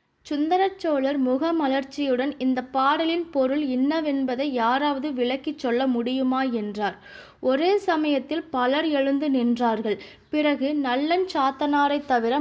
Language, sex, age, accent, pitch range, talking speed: Tamil, female, 20-39, native, 250-300 Hz, 95 wpm